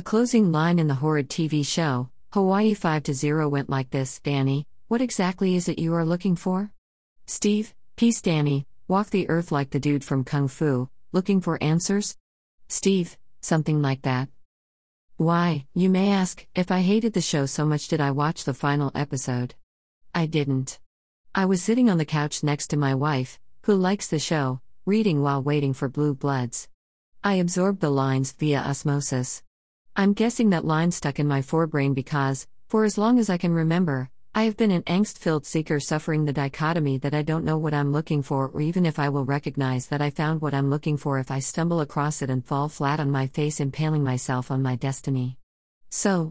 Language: English